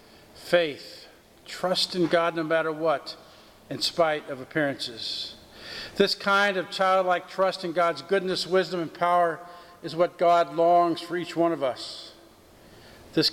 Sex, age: male, 50-69